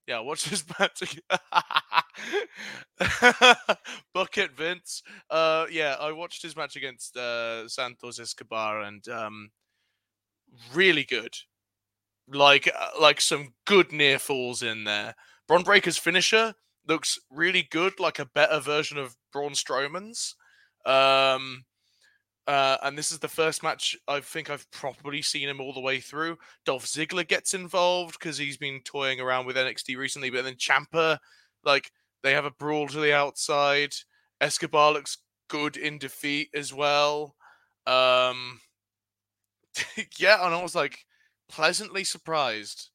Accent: British